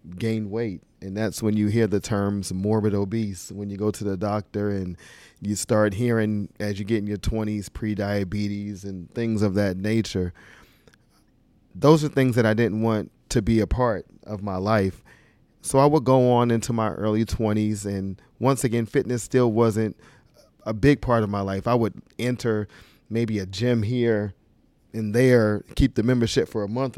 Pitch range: 100-125 Hz